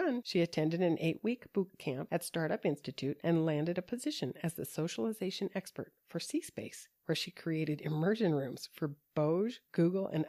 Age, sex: 40-59, female